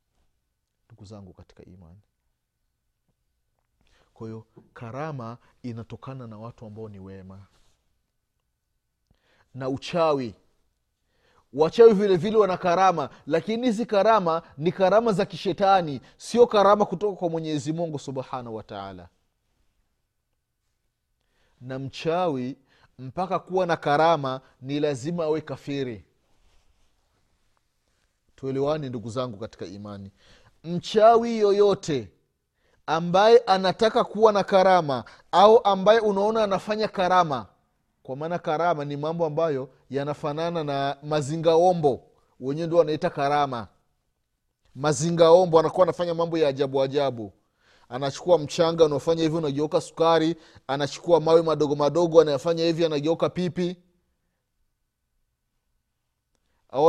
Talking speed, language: 100 wpm, Swahili